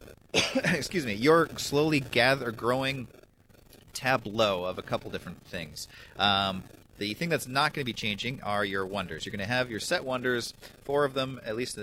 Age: 30-49